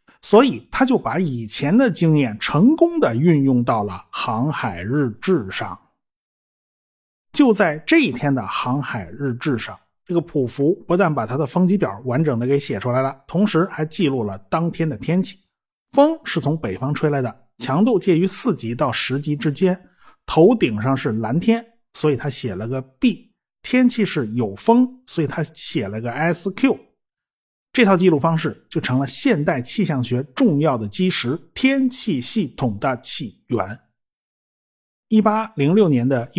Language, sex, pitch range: Chinese, male, 130-195 Hz